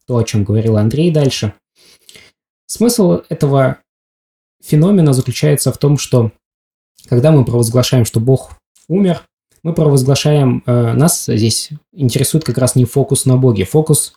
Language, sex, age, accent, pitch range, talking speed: Russian, male, 20-39, native, 115-150 Hz, 130 wpm